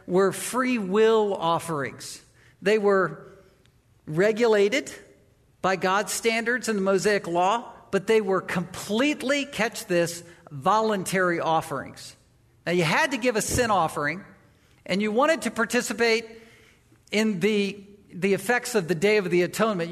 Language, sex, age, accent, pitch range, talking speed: English, male, 50-69, American, 170-220 Hz, 135 wpm